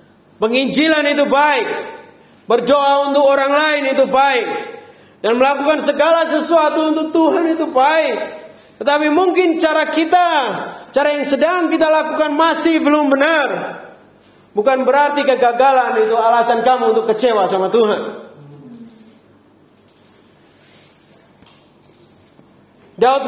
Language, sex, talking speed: Indonesian, male, 105 wpm